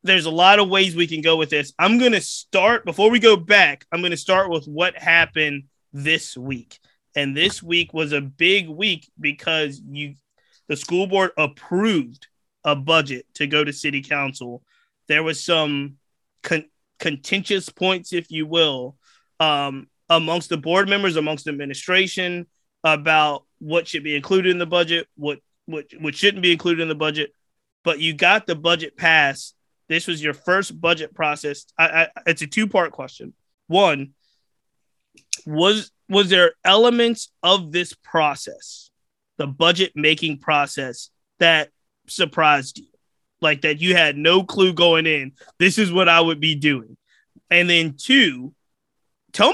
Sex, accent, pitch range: male, American, 150-180 Hz